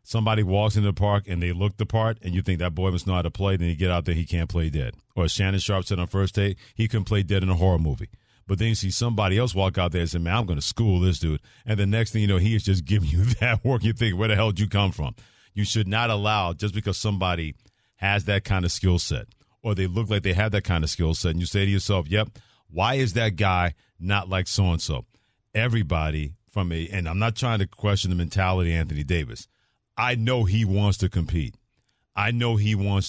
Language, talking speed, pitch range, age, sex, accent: English, 265 wpm, 95-110 Hz, 40-59, male, American